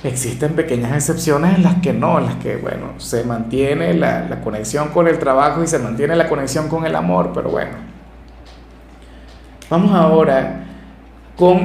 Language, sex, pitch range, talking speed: Spanish, male, 140-180 Hz, 165 wpm